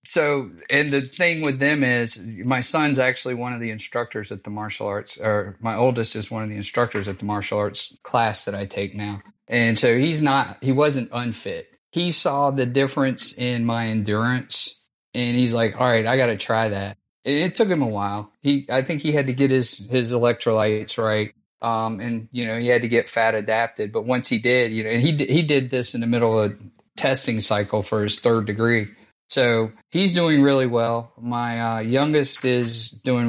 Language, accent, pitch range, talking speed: English, American, 110-125 Hz, 215 wpm